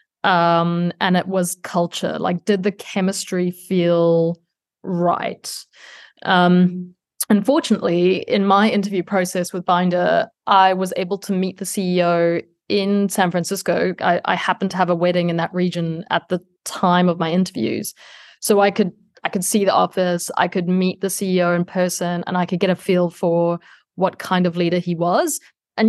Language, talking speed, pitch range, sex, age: English, 170 wpm, 175-200 Hz, female, 20-39